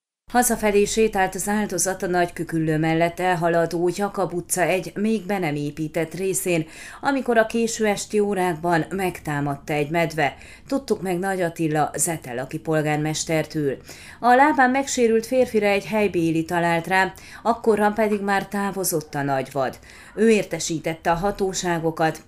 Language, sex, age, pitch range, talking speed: Hungarian, female, 30-49, 165-215 Hz, 130 wpm